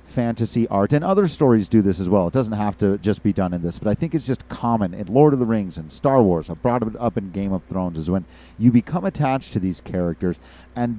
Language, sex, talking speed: English, male, 270 wpm